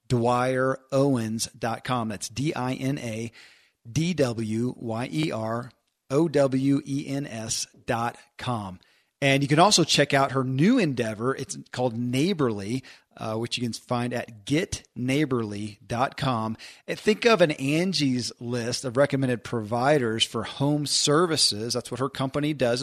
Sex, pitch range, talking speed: male, 120-145 Hz, 120 wpm